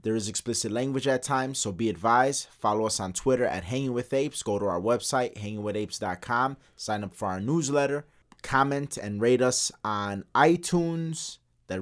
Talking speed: 175 wpm